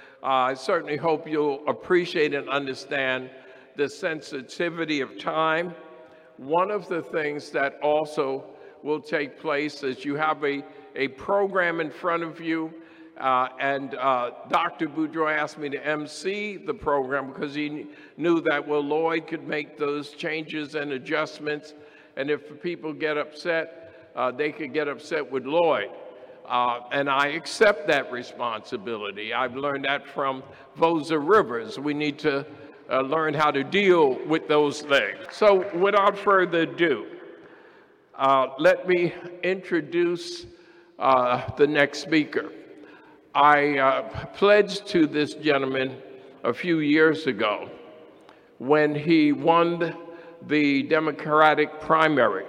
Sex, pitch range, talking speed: male, 140-170 Hz, 135 wpm